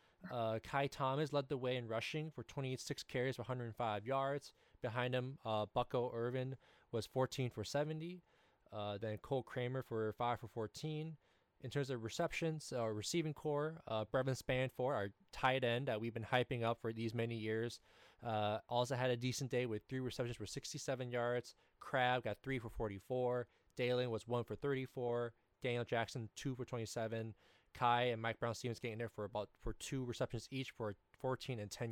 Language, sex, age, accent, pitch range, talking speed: English, male, 20-39, American, 115-135 Hz, 185 wpm